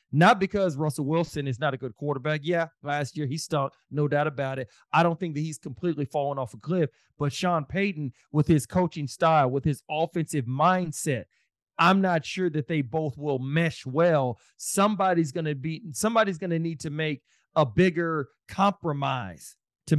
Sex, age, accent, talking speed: male, 40-59, American, 175 wpm